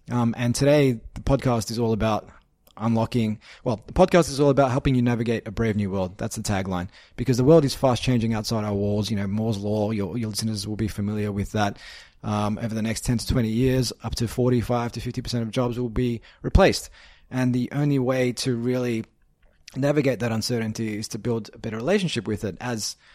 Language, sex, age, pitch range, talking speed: English, male, 20-39, 110-130 Hz, 210 wpm